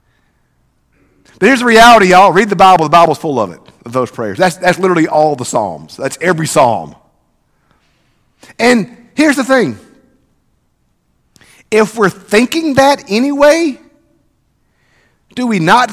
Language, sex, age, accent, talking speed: English, male, 50-69, American, 140 wpm